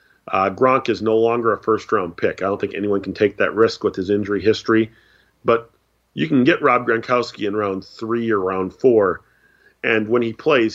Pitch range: 100-120 Hz